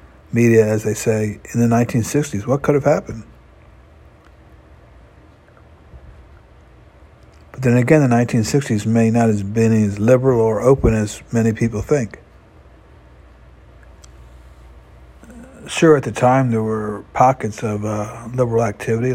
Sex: male